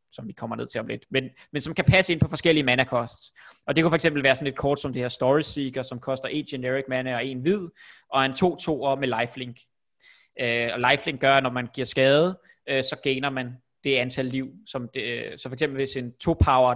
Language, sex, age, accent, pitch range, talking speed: Danish, male, 20-39, native, 130-160 Hz, 220 wpm